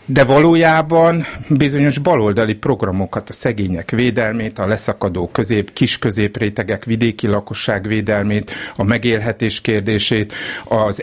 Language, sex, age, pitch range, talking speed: Hungarian, male, 50-69, 105-130 Hz, 110 wpm